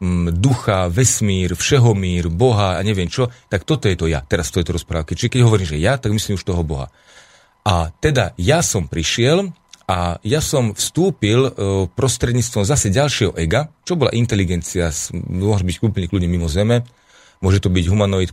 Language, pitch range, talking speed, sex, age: Slovak, 90-125 Hz, 170 wpm, male, 40-59